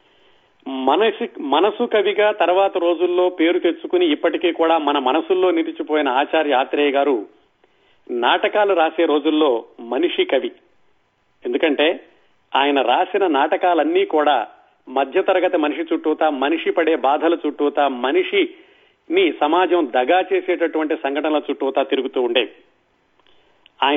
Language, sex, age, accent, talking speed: Telugu, male, 40-59, native, 100 wpm